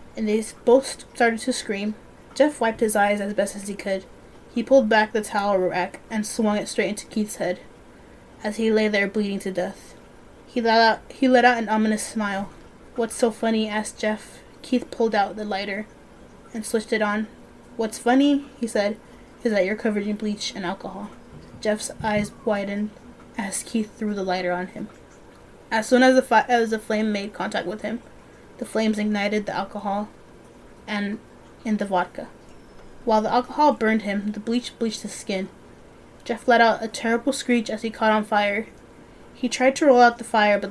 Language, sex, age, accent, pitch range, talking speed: English, female, 20-39, American, 205-230 Hz, 190 wpm